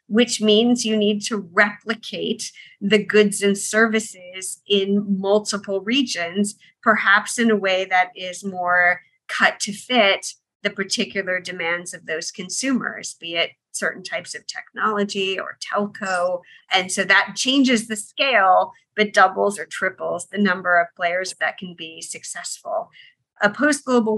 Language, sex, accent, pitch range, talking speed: English, female, American, 185-215 Hz, 140 wpm